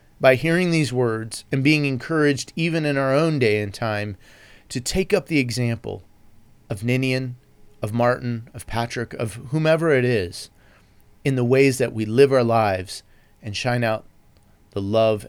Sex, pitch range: male, 105-135 Hz